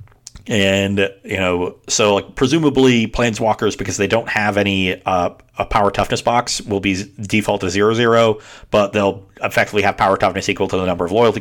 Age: 40-59